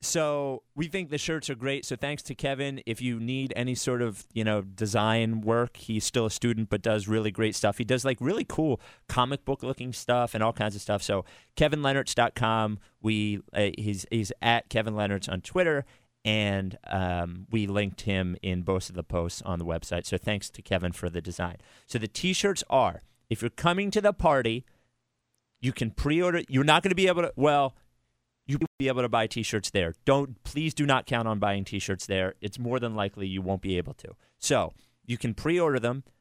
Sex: male